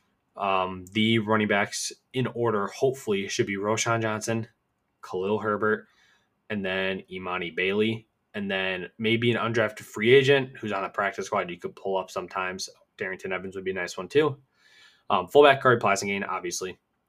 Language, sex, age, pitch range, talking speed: English, male, 20-39, 95-130 Hz, 170 wpm